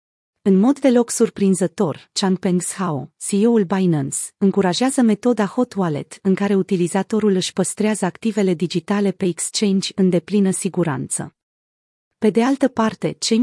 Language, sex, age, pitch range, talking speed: Romanian, female, 30-49, 180-225 Hz, 130 wpm